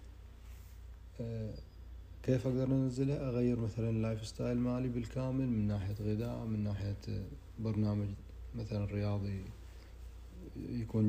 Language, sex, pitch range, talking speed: Arabic, male, 95-115 Hz, 105 wpm